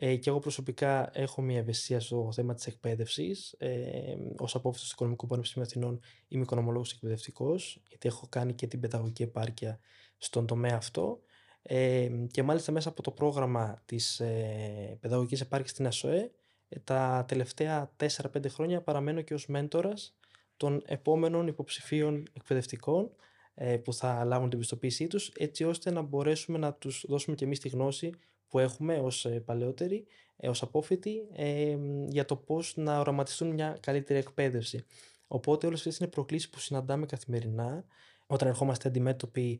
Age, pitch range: 20-39, 125-150 Hz